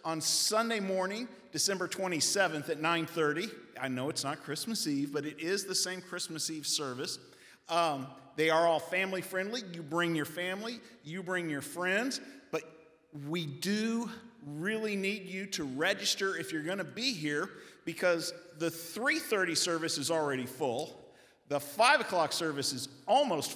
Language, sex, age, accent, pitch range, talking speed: English, male, 50-69, American, 150-195 Hz, 155 wpm